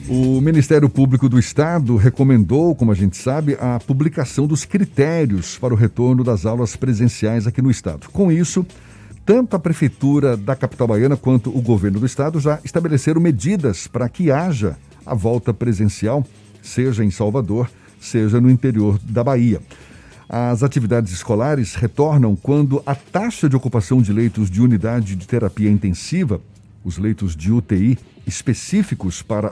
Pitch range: 105-145 Hz